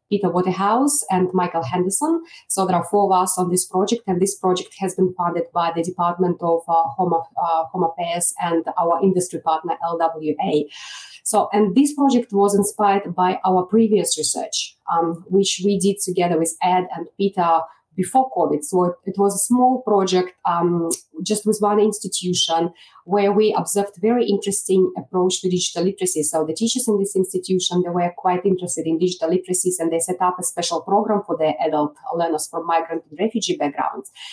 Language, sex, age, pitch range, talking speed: English, female, 30-49, 175-205 Hz, 180 wpm